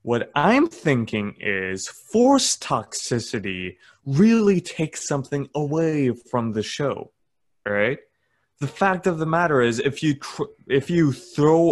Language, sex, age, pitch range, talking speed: English, male, 20-39, 125-180 Hz, 140 wpm